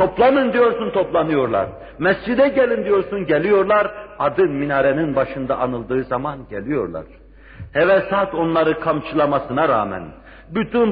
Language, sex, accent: Turkish, male, native